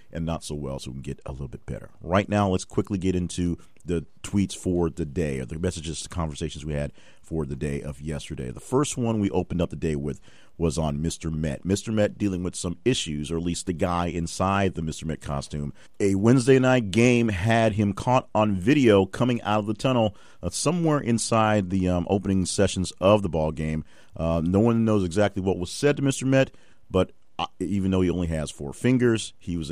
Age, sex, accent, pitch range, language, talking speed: 40-59, male, American, 75-100 Hz, English, 225 wpm